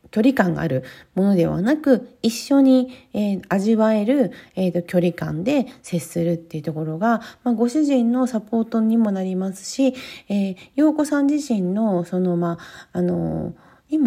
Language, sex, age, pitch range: Japanese, female, 40-59, 170-260 Hz